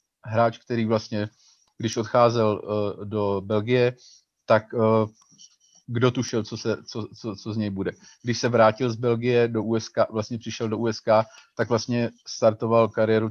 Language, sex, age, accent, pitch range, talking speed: Czech, male, 40-59, native, 110-115 Hz, 160 wpm